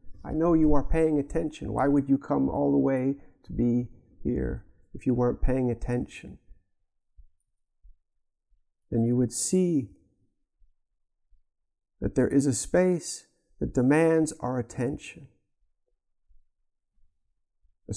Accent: American